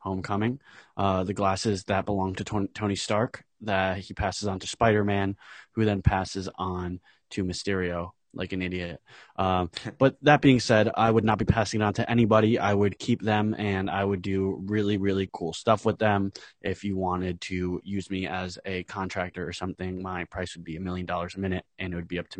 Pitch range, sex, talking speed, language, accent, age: 95-110 Hz, male, 210 wpm, English, American, 20-39